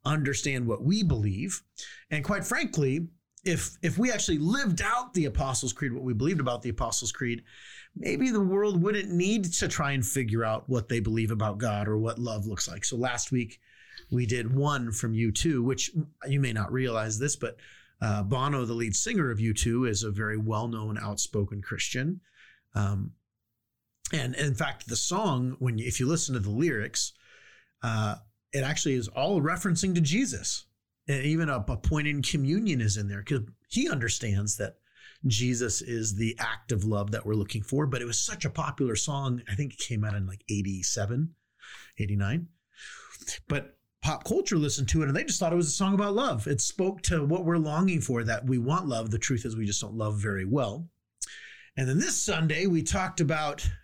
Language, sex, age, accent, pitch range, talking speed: English, male, 30-49, American, 110-160 Hz, 195 wpm